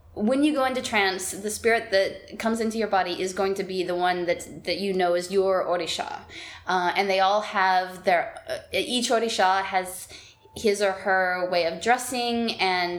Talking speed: 190 wpm